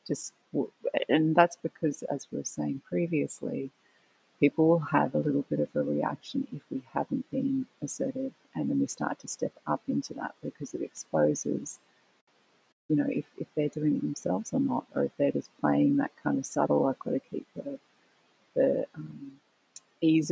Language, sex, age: English, female, 30-49